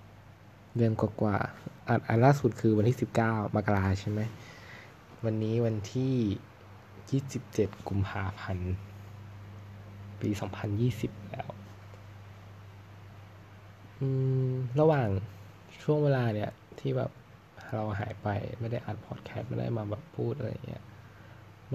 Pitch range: 100-120 Hz